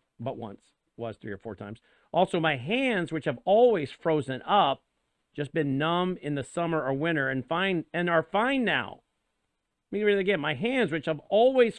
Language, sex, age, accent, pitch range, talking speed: English, male, 50-69, American, 125-190 Hz, 200 wpm